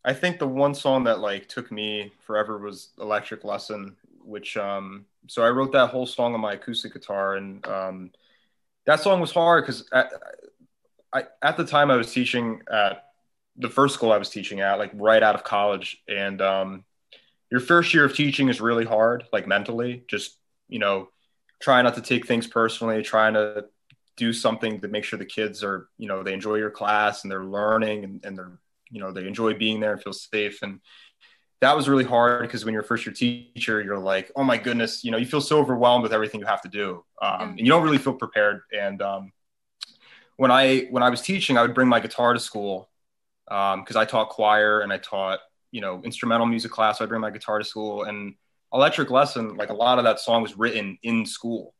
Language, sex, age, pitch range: English, male, 20-39, 100-120 Hz